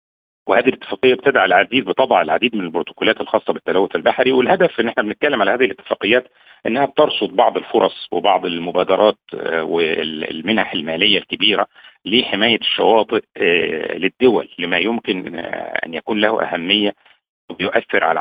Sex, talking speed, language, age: male, 125 wpm, Arabic, 50-69